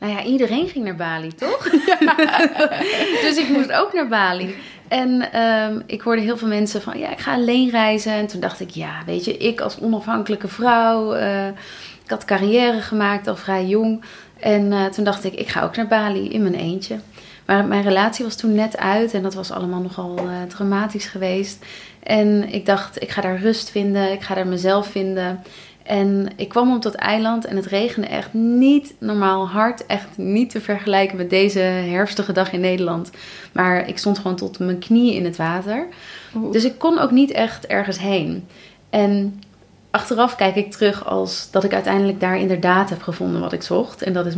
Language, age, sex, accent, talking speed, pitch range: Dutch, 30-49, female, Dutch, 195 wpm, 185-215 Hz